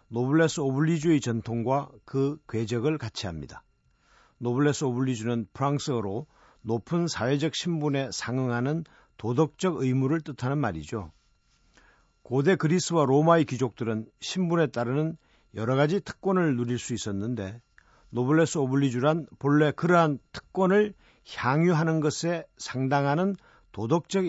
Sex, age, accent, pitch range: male, 50-69, native, 120-155 Hz